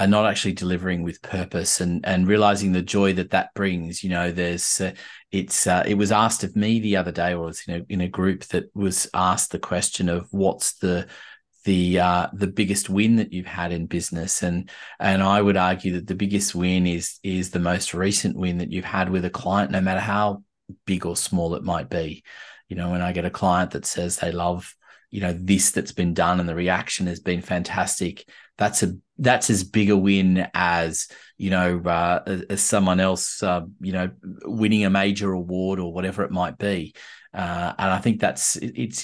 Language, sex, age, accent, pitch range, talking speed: English, male, 30-49, Australian, 90-105 Hz, 210 wpm